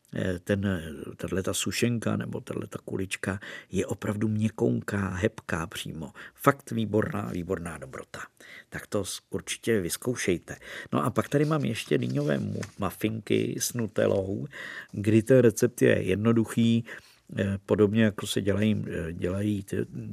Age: 50-69